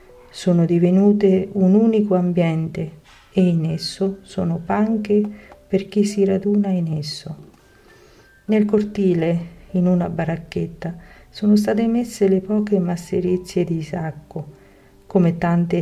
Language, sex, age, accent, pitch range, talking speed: Italian, female, 50-69, native, 160-195 Hz, 120 wpm